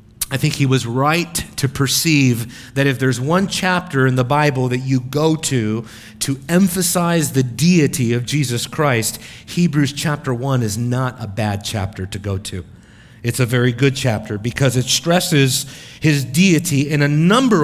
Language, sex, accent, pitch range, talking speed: English, male, American, 125-160 Hz, 170 wpm